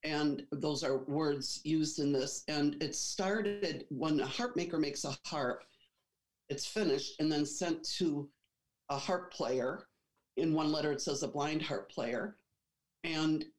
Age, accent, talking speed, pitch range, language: 50-69, American, 160 wpm, 140-165 Hz, English